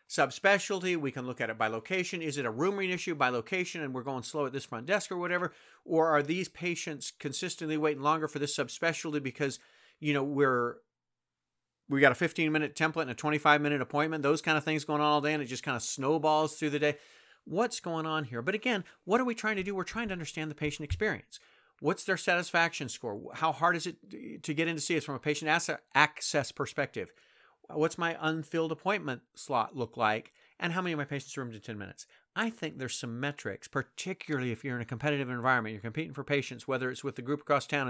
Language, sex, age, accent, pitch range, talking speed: English, male, 40-59, American, 125-160 Hz, 225 wpm